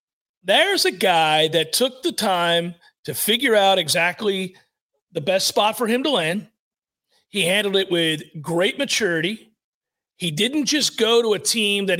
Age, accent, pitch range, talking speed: 40-59, American, 160-210 Hz, 160 wpm